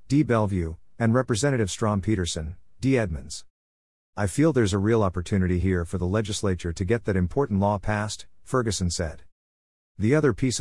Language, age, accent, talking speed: English, 50-69, American, 165 wpm